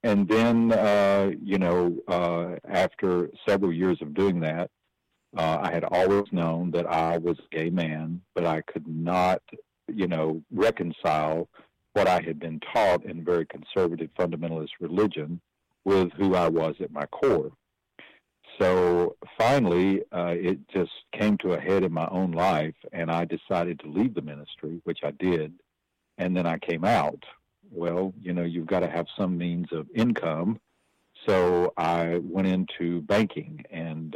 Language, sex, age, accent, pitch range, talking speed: English, male, 50-69, American, 80-95 Hz, 160 wpm